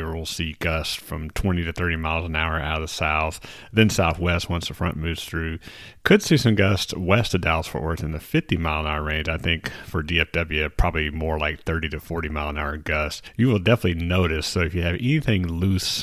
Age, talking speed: 30-49, 230 wpm